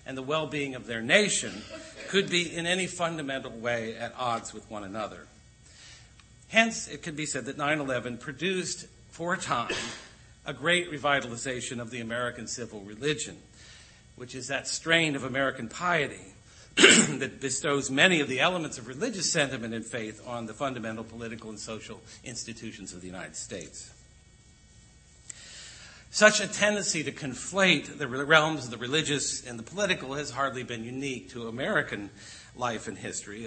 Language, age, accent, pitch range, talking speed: English, 50-69, American, 115-155 Hz, 155 wpm